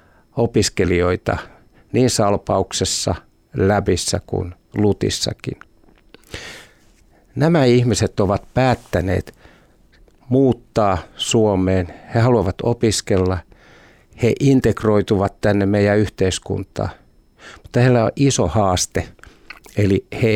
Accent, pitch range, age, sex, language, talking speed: native, 95-120 Hz, 50-69, male, Finnish, 80 wpm